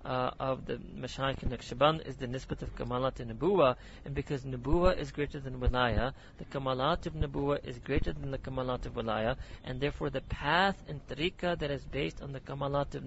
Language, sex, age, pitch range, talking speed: English, male, 40-59, 120-150 Hz, 200 wpm